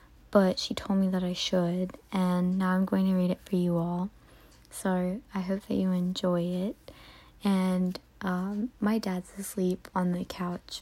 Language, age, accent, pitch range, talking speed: English, 20-39, American, 185-205 Hz, 175 wpm